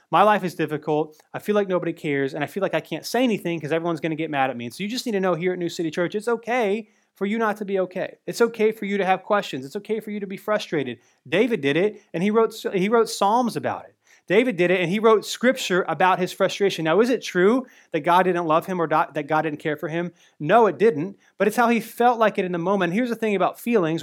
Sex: male